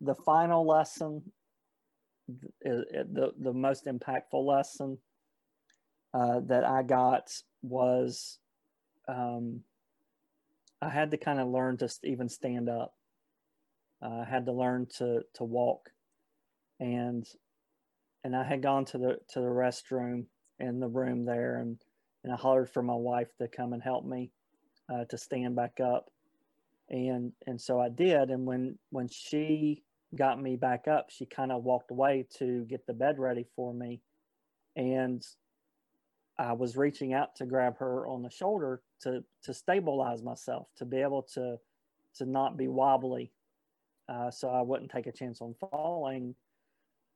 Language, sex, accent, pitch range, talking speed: English, male, American, 125-140 Hz, 155 wpm